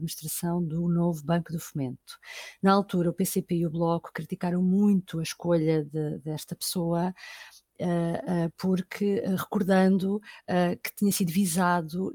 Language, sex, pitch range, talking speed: Portuguese, female, 170-205 Hz, 125 wpm